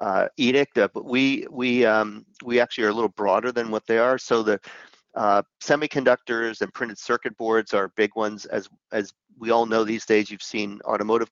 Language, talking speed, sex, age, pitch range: English, 200 wpm, male, 40-59, 105-125 Hz